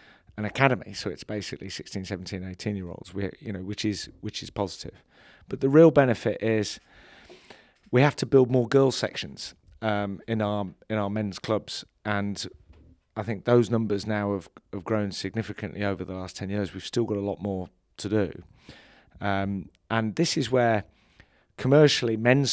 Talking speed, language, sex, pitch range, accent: 180 wpm, English, male, 95-115 Hz, British